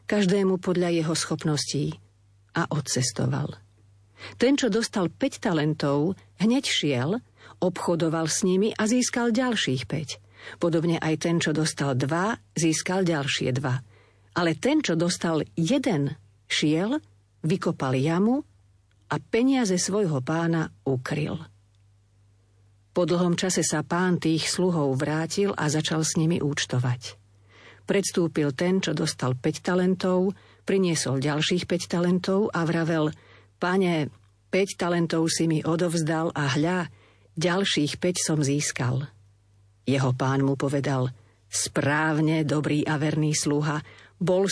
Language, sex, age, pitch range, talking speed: Slovak, female, 50-69, 130-175 Hz, 120 wpm